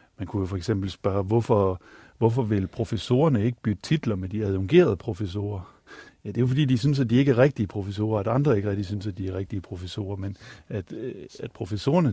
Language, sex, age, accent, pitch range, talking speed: Danish, male, 60-79, native, 100-130 Hz, 220 wpm